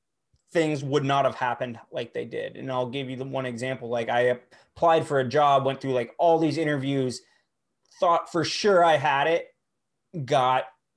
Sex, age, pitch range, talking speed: male, 20-39, 135-175 Hz, 185 wpm